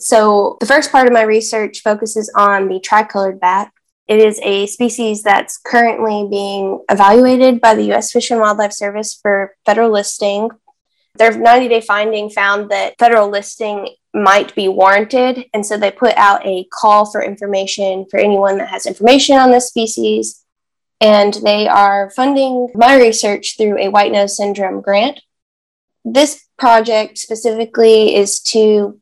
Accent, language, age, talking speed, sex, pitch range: American, English, 10-29, 155 wpm, female, 200-230 Hz